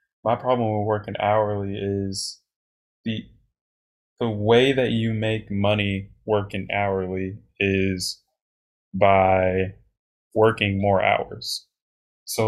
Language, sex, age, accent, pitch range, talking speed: English, male, 20-39, American, 95-115 Hz, 100 wpm